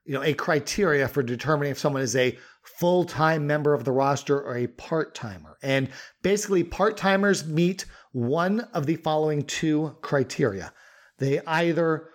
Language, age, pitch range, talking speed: English, 40-59, 135-165 Hz, 150 wpm